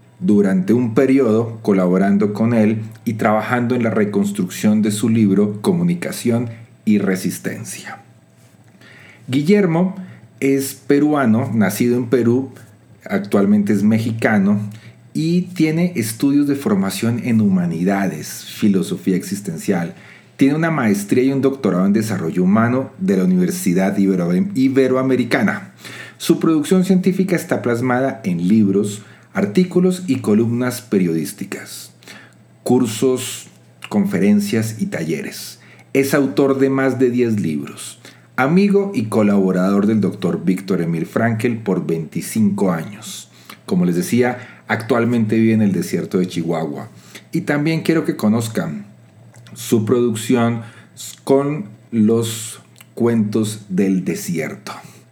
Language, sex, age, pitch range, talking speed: Spanish, male, 40-59, 100-135 Hz, 115 wpm